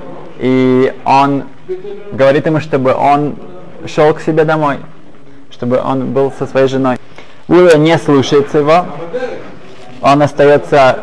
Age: 20-39